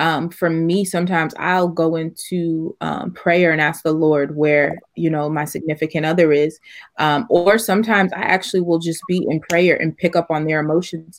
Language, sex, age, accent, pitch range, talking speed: English, female, 20-39, American, 155-175 Hz, 195 wpm